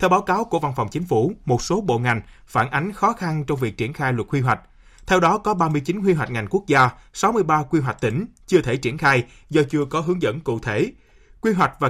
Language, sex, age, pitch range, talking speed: Vietnamese, male, 20-39, 130-180 Hz, 250 wpm